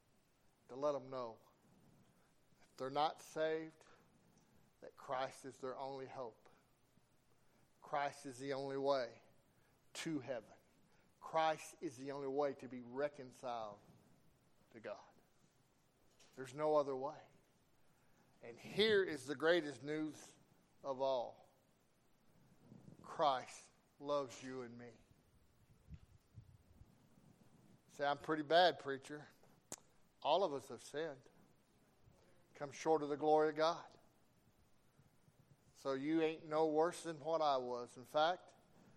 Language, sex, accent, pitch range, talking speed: English, male, American, 135-160 Hz, 115 wpm